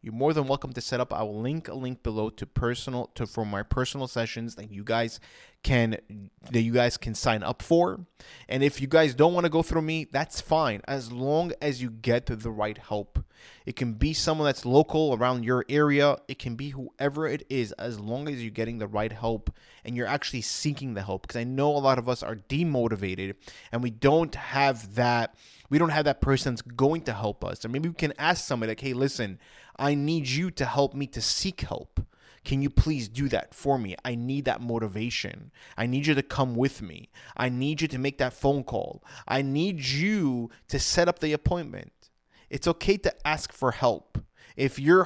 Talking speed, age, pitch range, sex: 220 wpm, 20-39, 120-150 Hz, male